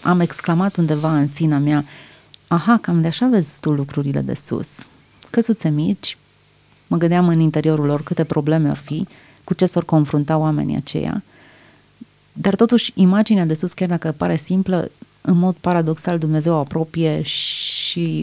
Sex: female